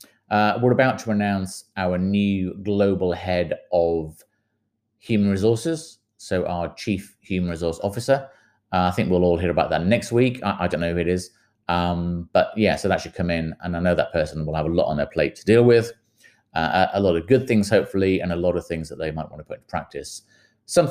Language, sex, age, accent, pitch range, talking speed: English, male, 30-49, British, 85-110 Hz, 225 wpm